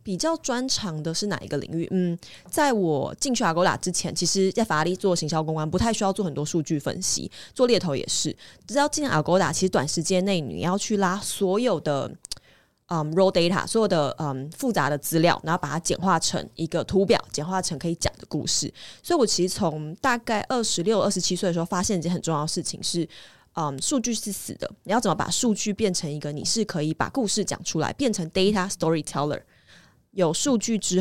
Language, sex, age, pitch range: Chinese, female, 20-39, 160-205 Hz